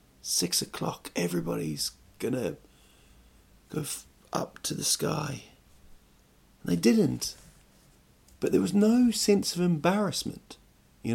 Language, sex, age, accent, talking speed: English, male, 40-59, British, 110 wpm